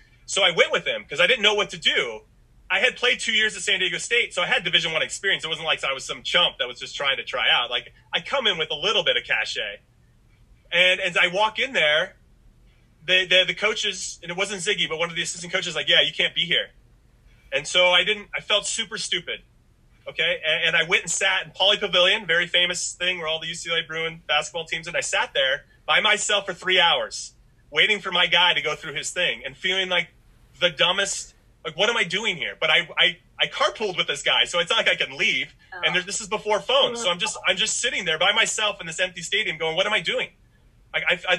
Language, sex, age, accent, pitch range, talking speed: English, male, 30-49, American, 170-210 Hz, 255 wpm